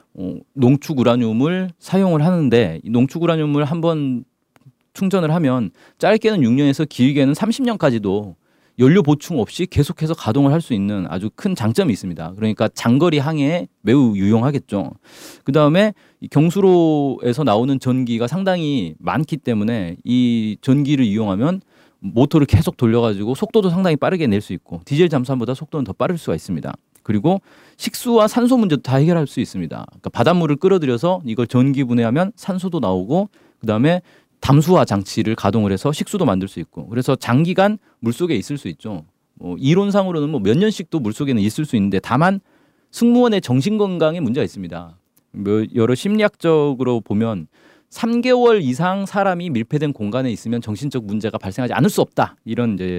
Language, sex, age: Korean, male, 40-59